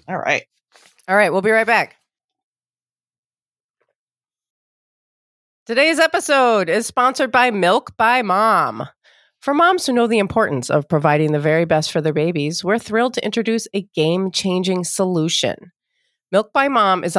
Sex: female